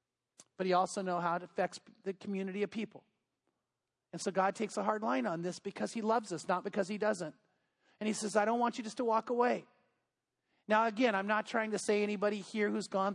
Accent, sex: American, male